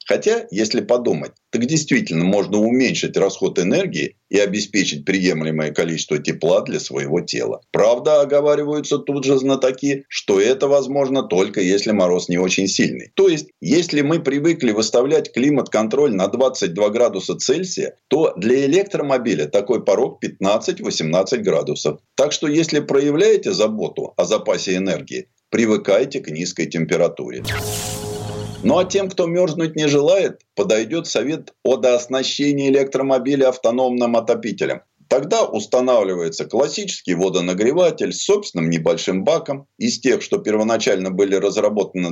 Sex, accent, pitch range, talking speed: male, native, 105-175 Hz, 125 wpm